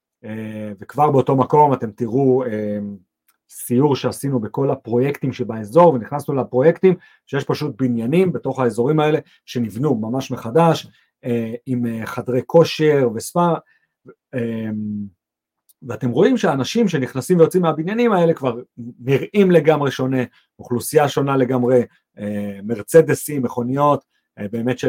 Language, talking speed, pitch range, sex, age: English, 110 wpm, 120-155 Hz, male, 40-59